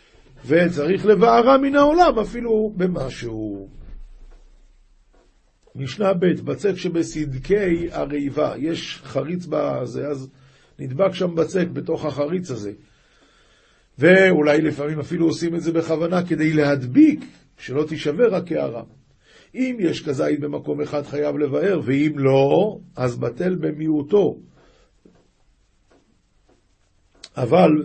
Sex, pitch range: male, 140-175 Hz